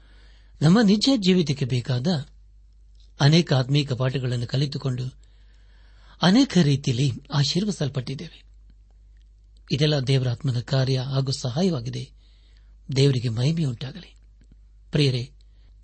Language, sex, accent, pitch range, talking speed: Kannada, male, native, 130-160 Hz, 70 wpm